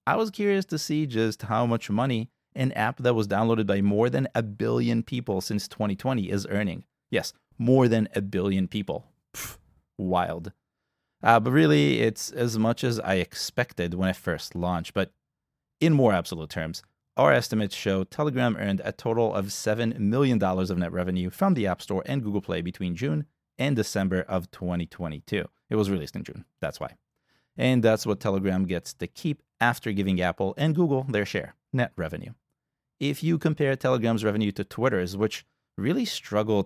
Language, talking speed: English, 180 wpm